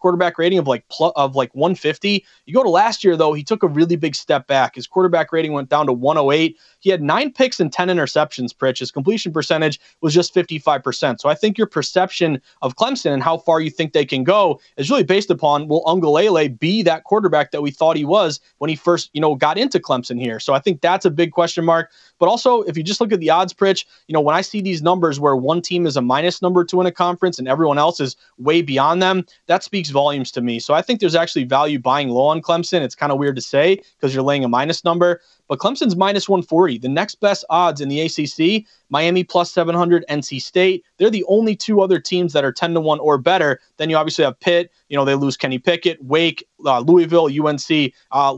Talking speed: 240 wpm